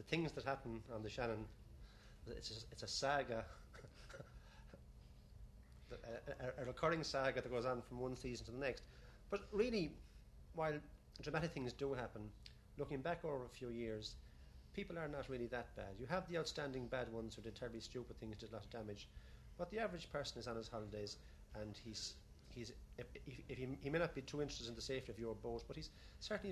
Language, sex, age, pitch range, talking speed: English, male, 40-59, 110-145 Hz, 210 wpm